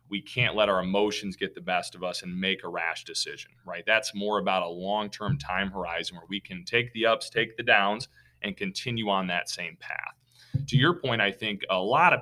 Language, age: English, 30-49